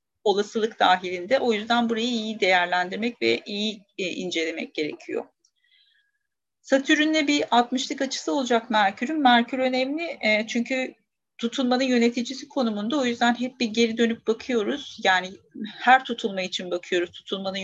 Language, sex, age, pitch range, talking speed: Turkish, female, 40-59, 195-255 Hz, 125 wpm